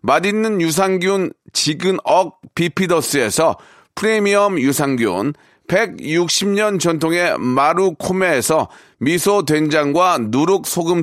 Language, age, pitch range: Korean, 40-59, 165-215 Hz